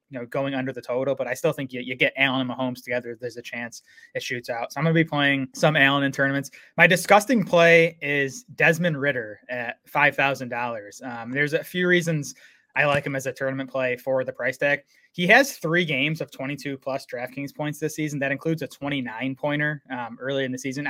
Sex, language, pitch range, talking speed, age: male, English, 125-150 Hz, 225 wpm, 20-39